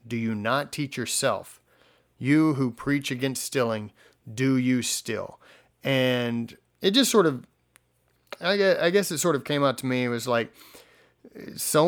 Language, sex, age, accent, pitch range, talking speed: English, male, 30-49, American, 120-155 Hz, 150 wpm